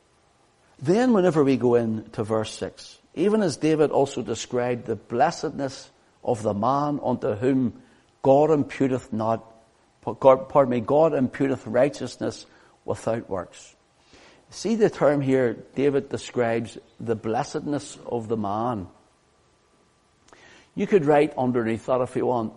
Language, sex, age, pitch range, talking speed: English, male, 60-79, 115-160 Hz, 130 wpm